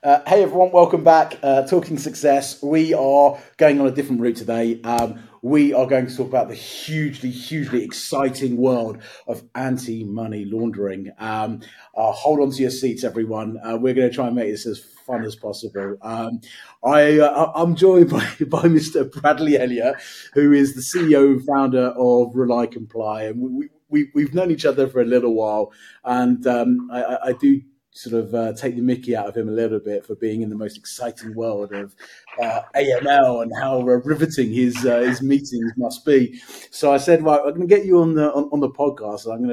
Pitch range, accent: 115-145 Hz, British